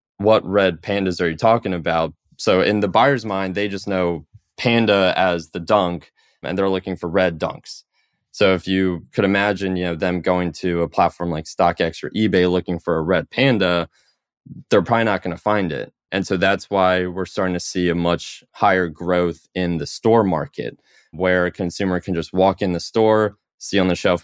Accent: American